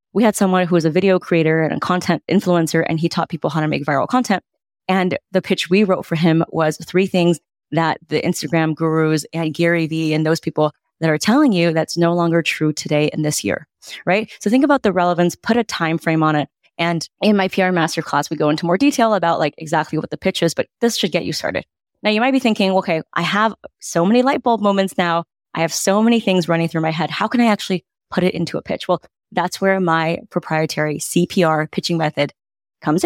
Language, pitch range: English, 160-195 Hz